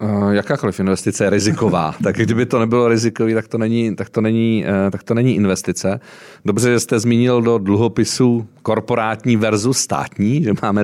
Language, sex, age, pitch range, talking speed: Czech, male, 40-59, 95-110 Hz, 165 wpm